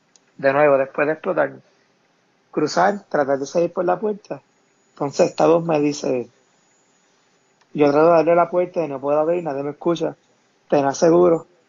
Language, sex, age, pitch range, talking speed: Spanish, male, 30-49, 140-170 Hz, 175 wpm